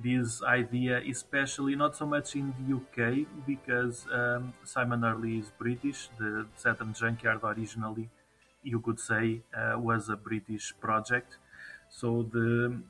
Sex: male